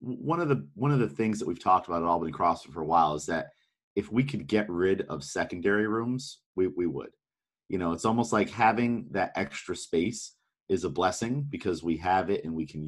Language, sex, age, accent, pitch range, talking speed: English, male, 30-49, American, 85-110 Hz, 230 wpm